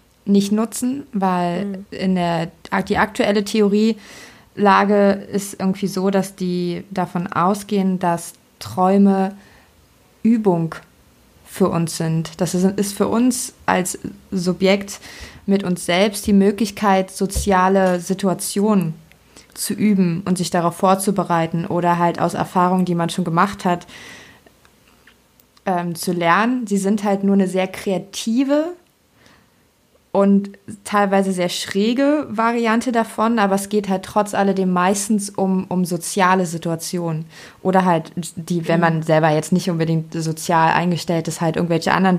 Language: German